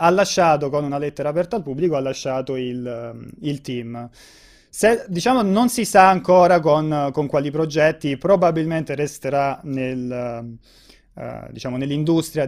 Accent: native